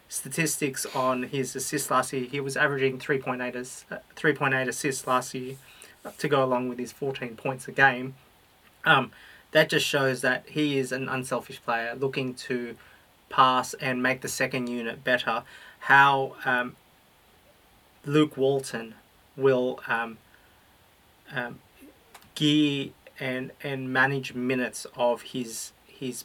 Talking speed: 135 wpm